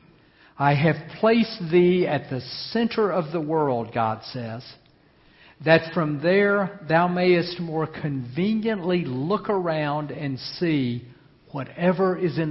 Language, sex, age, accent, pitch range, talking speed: English, male, 60-79, American, 135-185 Hz, 125 wpm